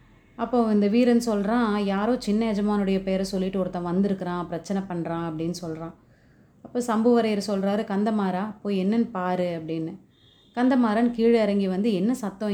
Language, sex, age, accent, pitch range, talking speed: Tamil, female, 30-49, native, 175-205 Hz, 140 wpm